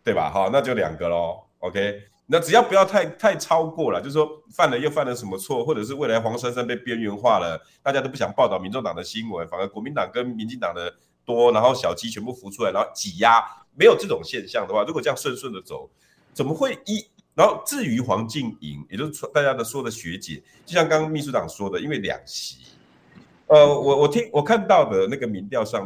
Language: Chinese